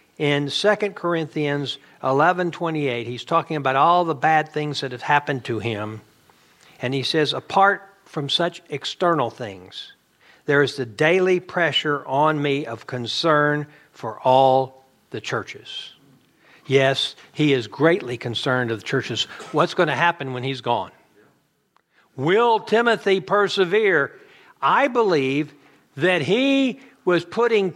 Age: 60-79